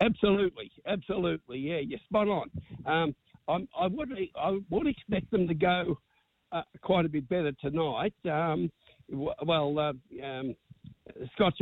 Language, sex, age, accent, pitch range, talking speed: English, male, 60-79, Australian, 130-165 Hz, 140 wpm